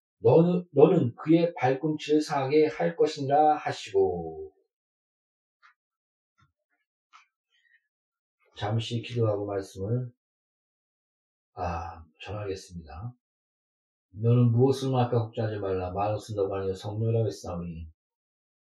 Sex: male